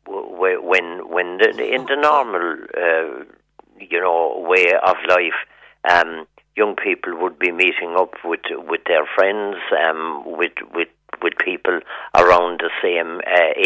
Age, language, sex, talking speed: 60-79, English, male, 140 wpm